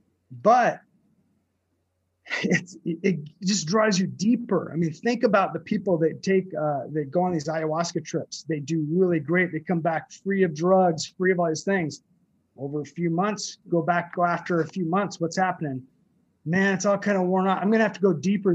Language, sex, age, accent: English, male, 30-49, American